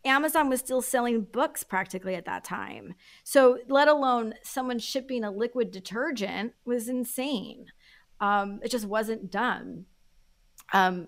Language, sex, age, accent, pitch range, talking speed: English, female, 30-49, American, 190-240 Hz, 135 wpm